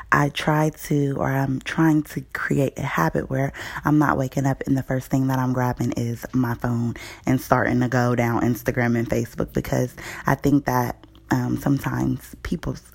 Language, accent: English, American